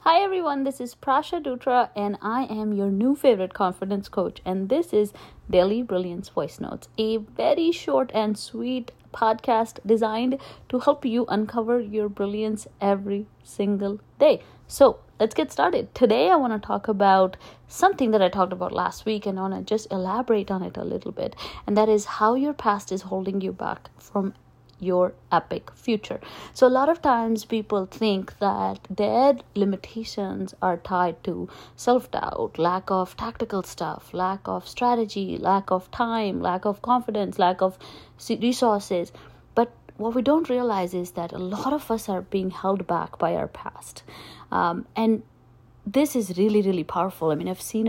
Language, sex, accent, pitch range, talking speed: English, female, Indian, 190-235 Hz, 175 wpm